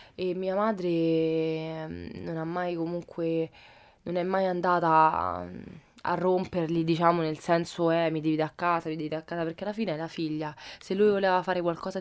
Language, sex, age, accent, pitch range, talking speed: Italian, female, 20-39, native, 155-175 Hz, 190 wpm